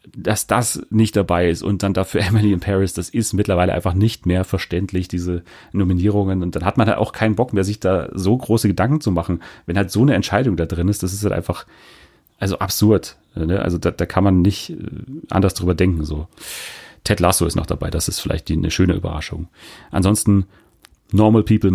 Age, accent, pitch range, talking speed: 30-49, German, 85-105 Hz, 210 wpm